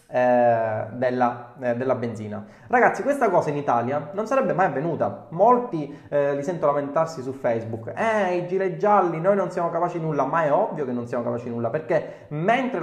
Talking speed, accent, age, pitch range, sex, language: 180 wpm, native, 20-39, 125-145 Hz, male, Italian